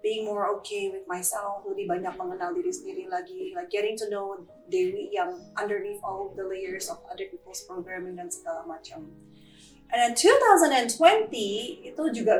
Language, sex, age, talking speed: Indonesian, female, 20-39, 140 wpm